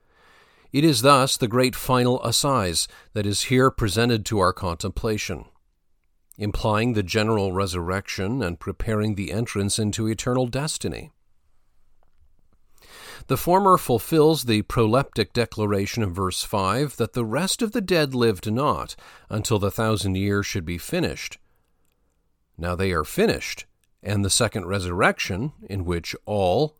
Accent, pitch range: American, 95-130 Hz